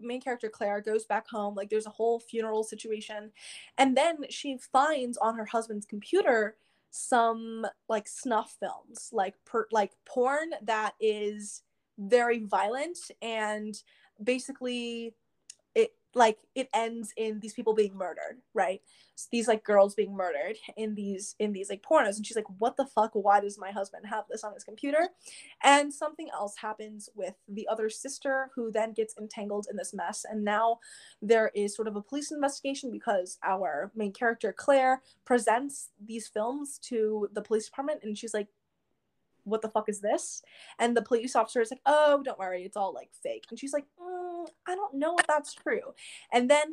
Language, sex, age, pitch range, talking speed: English, female, 10-29, 215-265 Hz, 175 wpm